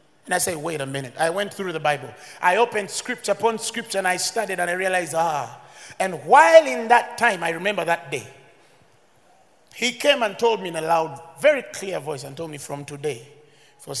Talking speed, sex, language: 210 wpm, male, English